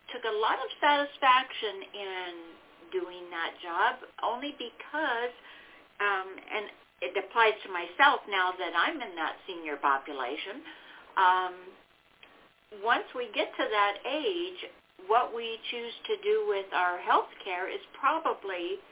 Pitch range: 180-260 Hz